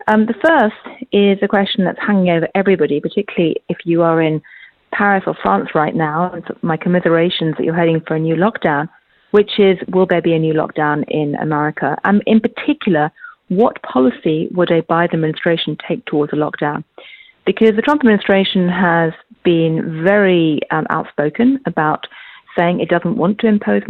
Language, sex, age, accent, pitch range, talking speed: English, female, 40-59, British, 165-205 Hz, 180 wpm